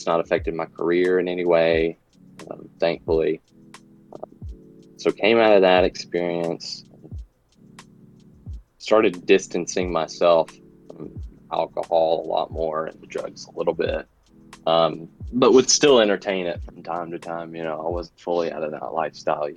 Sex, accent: male, American